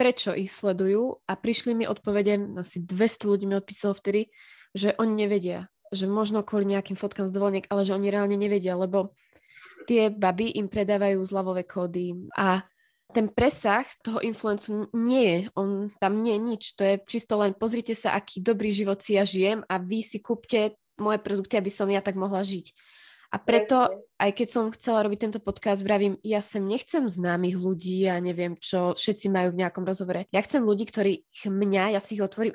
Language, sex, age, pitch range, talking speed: Slovak, female, 20-39, 190-215 Hz, 190 wpm